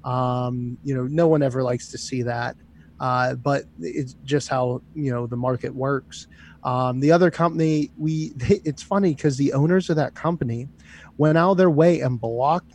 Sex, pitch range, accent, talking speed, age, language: male, 130-165 Hz, American, 185 wpm, 30-49, English